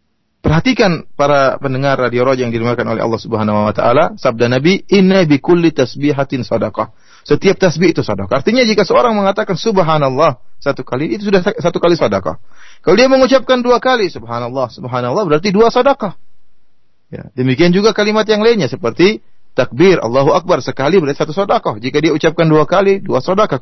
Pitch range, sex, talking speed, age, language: 125-195 Hz, male, 165 wpm, 30-49, Indonesian